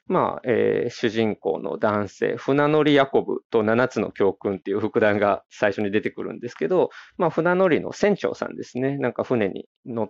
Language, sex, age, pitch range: Japanese, male, 20-39, 110-150 Hz